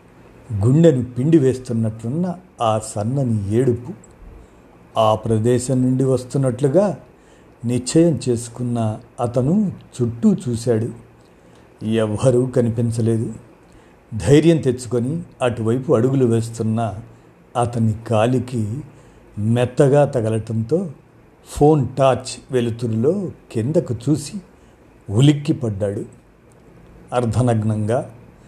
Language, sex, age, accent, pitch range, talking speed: Telugu, male, 50-69, native, 115-135 Hz, 70 wpm